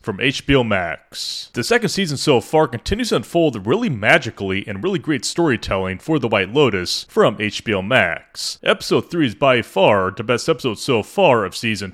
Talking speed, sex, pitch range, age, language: 180 wpm, male, 105-160 Hz, 30-49, English